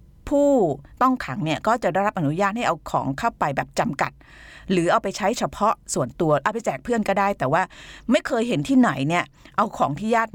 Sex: female